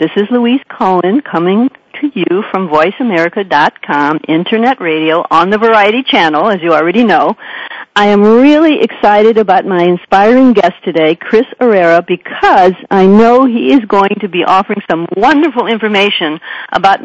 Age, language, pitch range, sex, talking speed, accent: 60-79, English, 185-255 Hz, female, 150 wpm, American